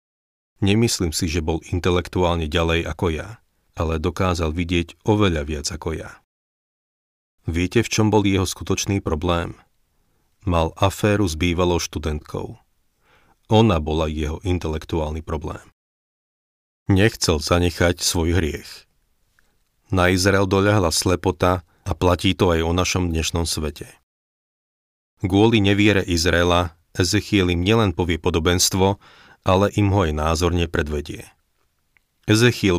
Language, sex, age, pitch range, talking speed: Slovak, male, 40-59, 80-100 Hz, 115 wpm